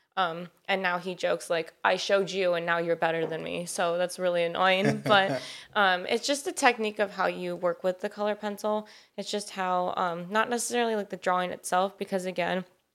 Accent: American